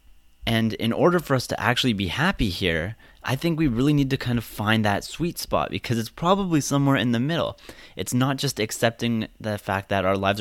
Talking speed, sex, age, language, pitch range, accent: 220 wpm, male, 30-49, English, 95-125 Hz, American